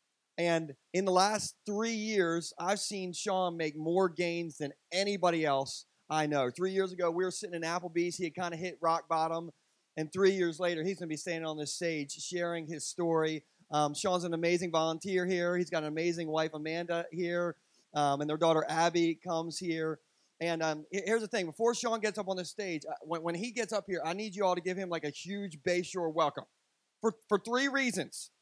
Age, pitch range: 30-49, 160-195 Hz